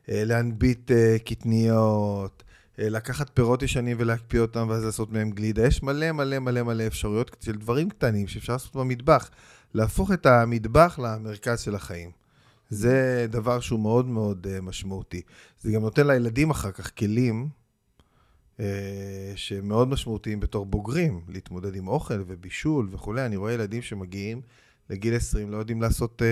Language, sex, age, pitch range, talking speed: Hebrew, male, 30-49, 105-125 Hz, 140 wpm